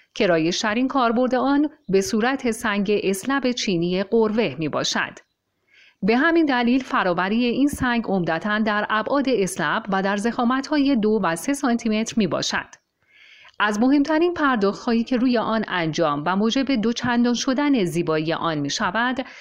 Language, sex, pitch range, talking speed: Persian, female, 195-260 Hz, 150 wpm